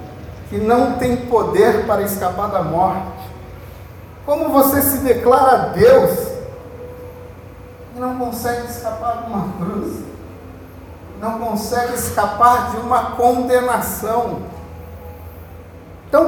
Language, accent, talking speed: Portuguese, Brazilian, 100 wpm